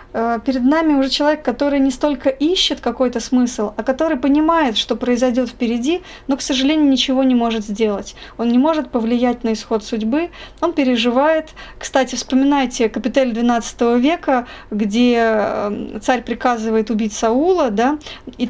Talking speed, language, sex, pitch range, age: 145 wpm, Russian, female, 230-285 Hz, 20-39